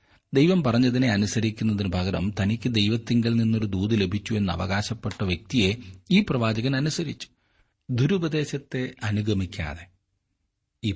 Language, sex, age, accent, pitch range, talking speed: Malayalam, male, 30-49, native, 90-115 Hz, 100 wpm